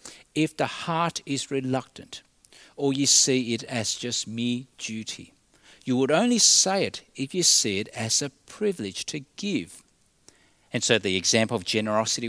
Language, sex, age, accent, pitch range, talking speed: English, male, 50-69, Australian, 115-170 Hz, 160 wpm